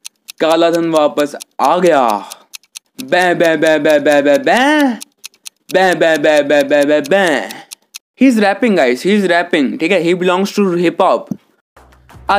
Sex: male